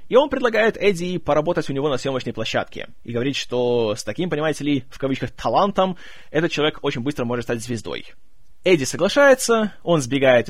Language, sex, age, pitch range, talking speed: Russian, male, 20-39, 125-170 Hz, 175 wpm